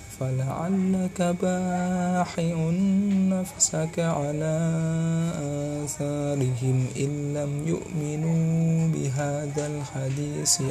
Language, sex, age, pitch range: Indonesian, male, 20-39, 145-175 Hz